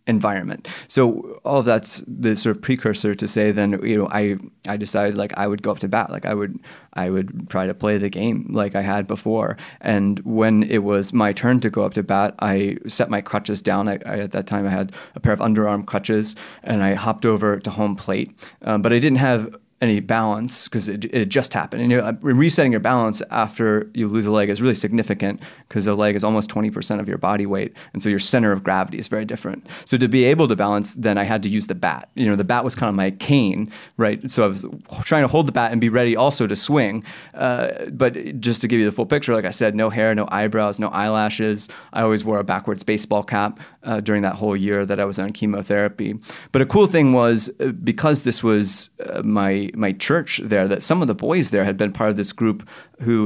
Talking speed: 240 wpm